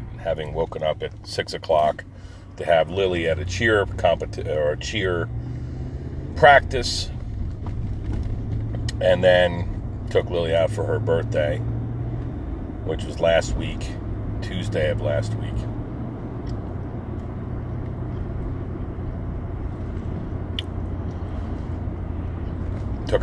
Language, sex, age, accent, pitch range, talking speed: English, male, 40-59, American, 95-110 Hz, 90 wpm